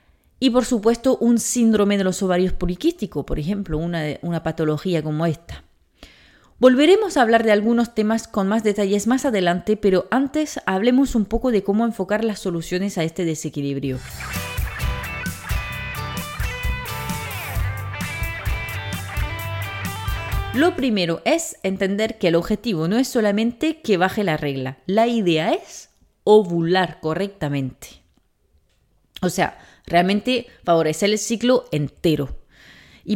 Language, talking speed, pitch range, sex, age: Spanish, 120 wpm, 165-230 Hz, female, 30-49